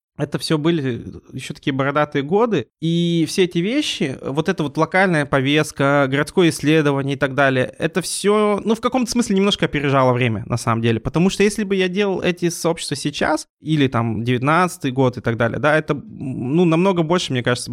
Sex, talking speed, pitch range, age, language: male, 190 wpm, 130-165 Hz, 20-39, Russian